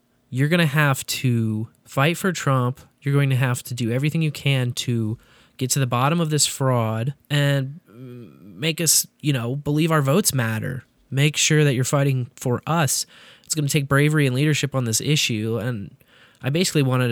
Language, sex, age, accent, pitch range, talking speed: English, male, 20-39, American, 115-140 Hz, 195 wpm